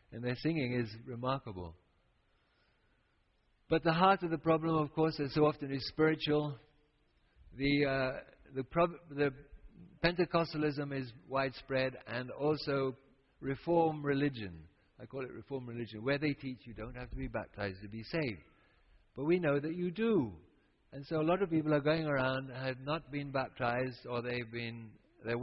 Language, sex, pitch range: English, male, 110-145 Hz